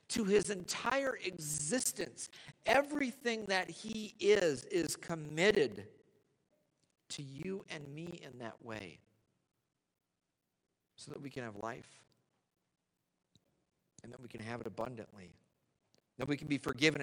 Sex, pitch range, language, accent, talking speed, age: male, 125-170 Hz, English, American, 125 wpm, 50-69